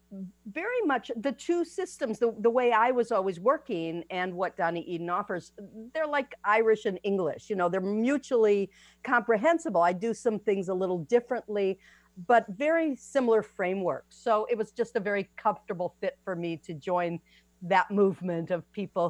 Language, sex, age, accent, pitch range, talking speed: English, female, 50-69, American, 180-235 Hz, 170 wpm